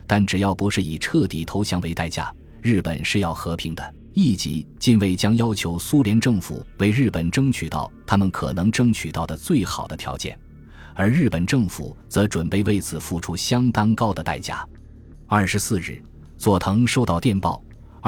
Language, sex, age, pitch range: Chinese, male, 20-39, 85-110 Hz